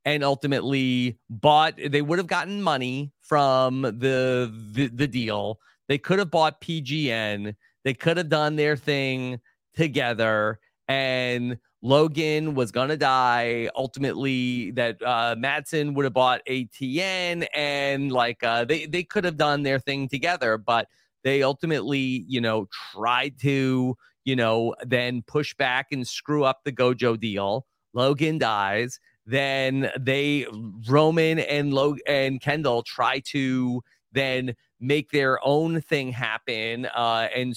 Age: 30-49